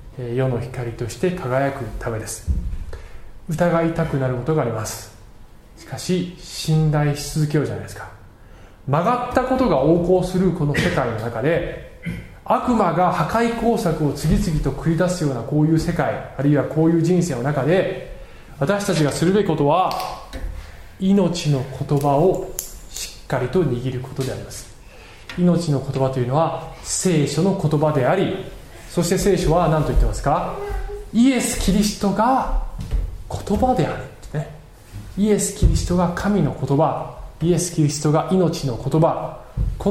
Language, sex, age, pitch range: Japanese, male, 20-39, 125-175 Hz